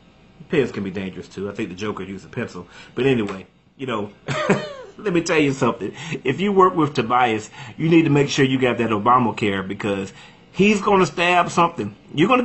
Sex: male